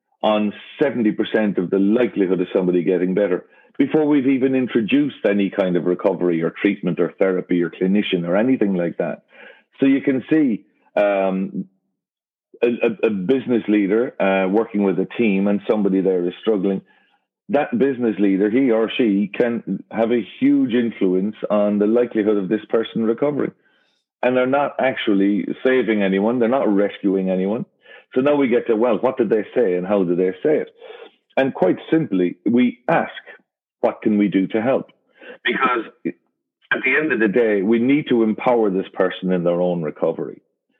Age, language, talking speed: 40-59, English, 175 wpm